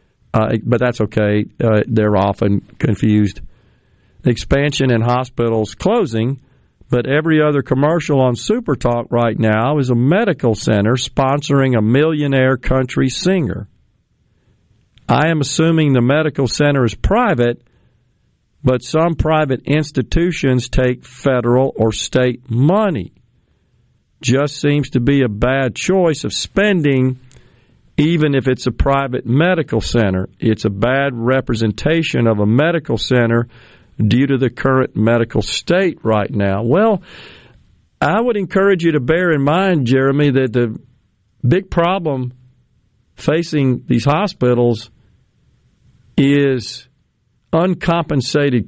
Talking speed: 120 wpm